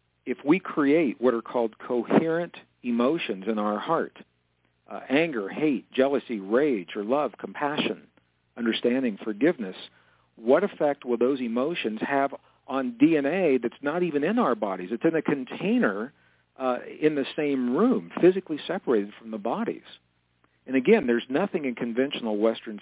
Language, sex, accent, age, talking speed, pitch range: English, male, American, 50-69, 145 wpm, 105-140 Hz